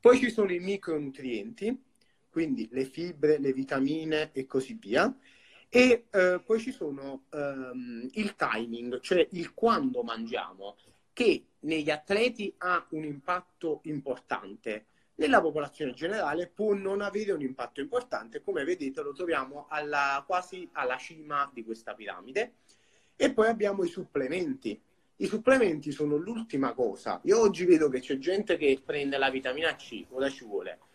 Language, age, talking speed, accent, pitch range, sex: Italian, 30-49, 145 wpm, native, 140-220 Hz, male